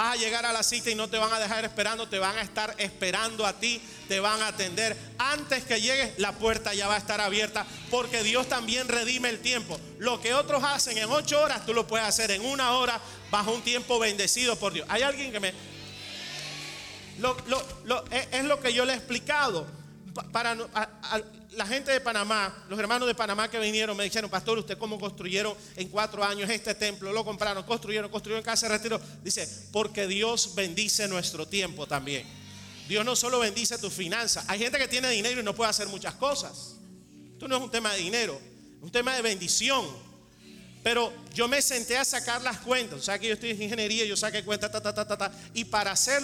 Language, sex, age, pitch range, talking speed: Spanish, male, 40-59, 205-240 Hz, 220 wpm